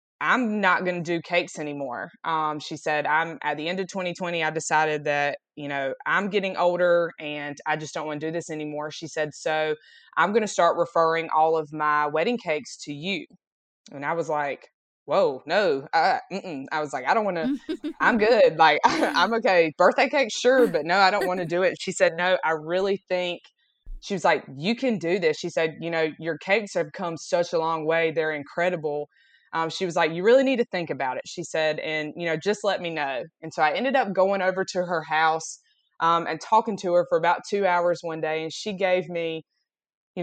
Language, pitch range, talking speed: English, 155-190 Hz, 230 wpm